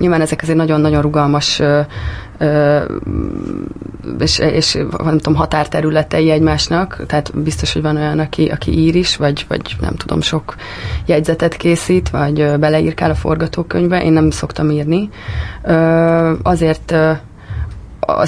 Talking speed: 125 wpm